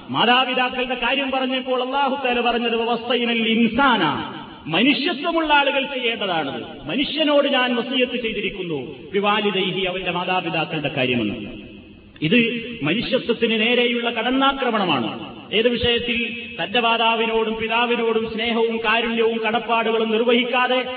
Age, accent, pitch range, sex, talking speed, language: 30-49, native, 220-255 Hz, male, 80 wpm, Malayalam